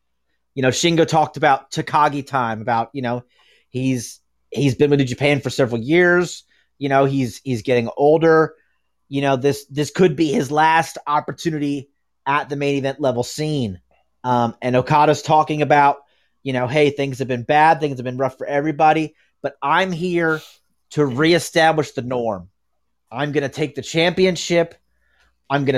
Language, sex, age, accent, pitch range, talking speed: English, male, 30-49, American, 130-160 Hz, 170 wpm